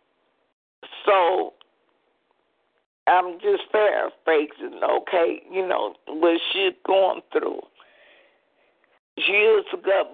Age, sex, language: 50-69, female, English